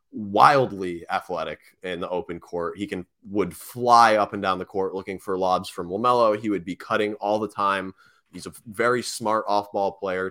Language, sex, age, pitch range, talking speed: English, male, 20-39, 90-105 Hz, 190 wpm